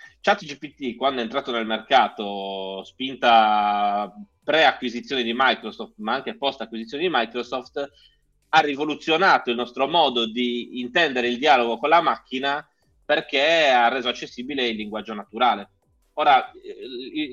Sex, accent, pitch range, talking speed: male, native, 115-155 Hz, 125 wpm